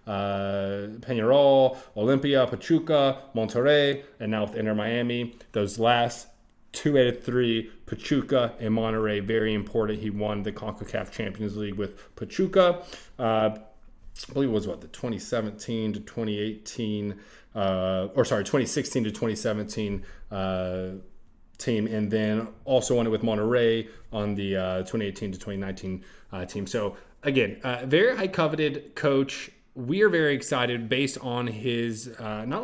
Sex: male